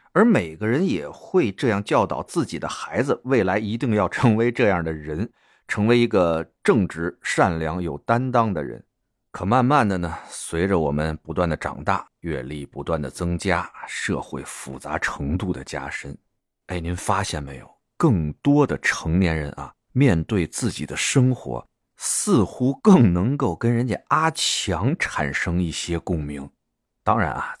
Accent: native